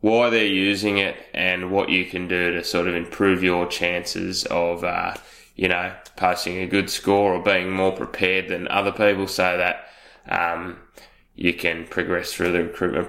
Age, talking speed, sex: 10-29, 180 wpm, male